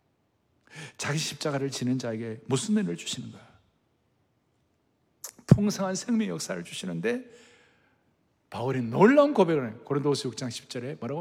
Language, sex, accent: Korean, male, native